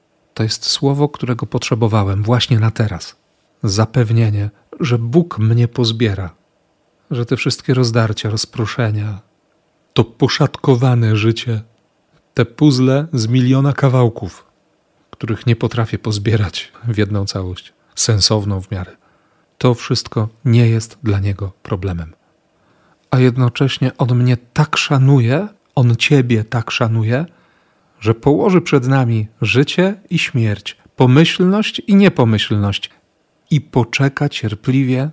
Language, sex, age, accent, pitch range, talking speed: Polish, male, 40-59, native, 110-140 Hz, 115 wpm